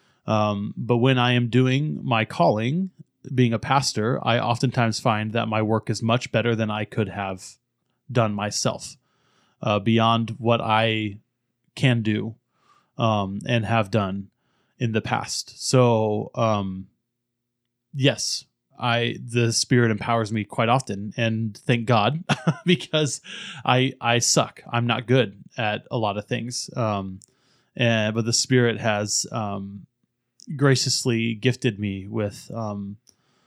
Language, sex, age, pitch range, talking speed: English, male, 20-39, 110-130 Hz, 135 wpm